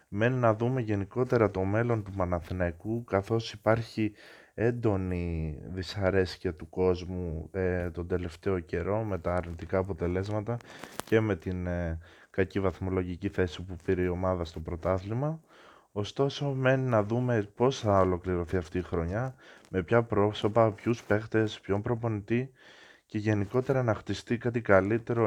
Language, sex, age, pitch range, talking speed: Greek, male, 20-39, 90-115 Hz, 140 wpm